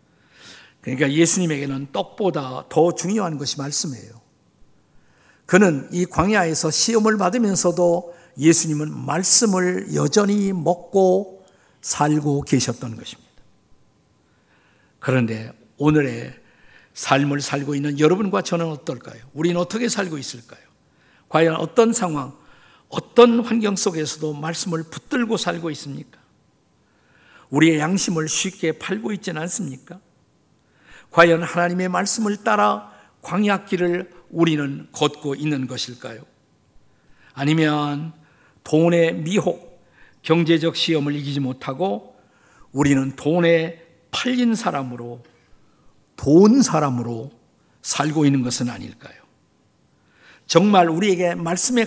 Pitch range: 145-190 Hz